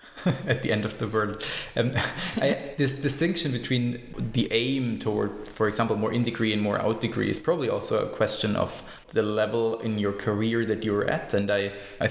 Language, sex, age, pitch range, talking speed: English, male, 20-39, 110-135 Hz, 195 wpm